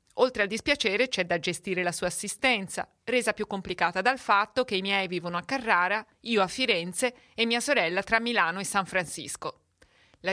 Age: 40-59